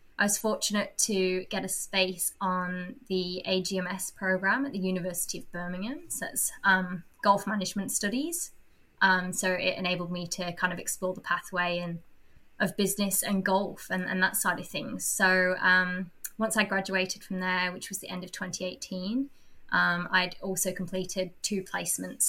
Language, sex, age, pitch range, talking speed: English, female, 20-39, 175-195 Hz, 170 wpm